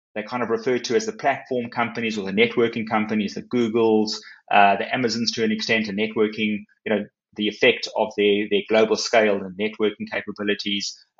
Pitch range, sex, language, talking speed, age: 110-125 Hz, male, English, 190 wpm, 20-39